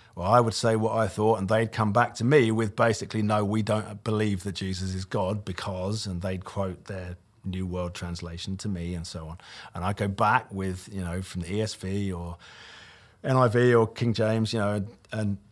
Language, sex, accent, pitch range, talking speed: English, male, British, 100-130 Hz, 210 wpm